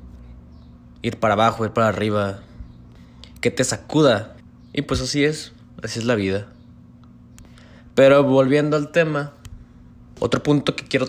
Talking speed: 135 wpm